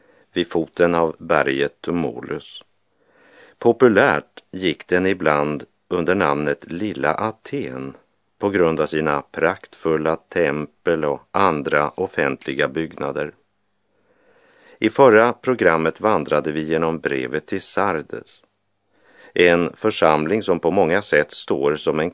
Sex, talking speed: male, 110 wpm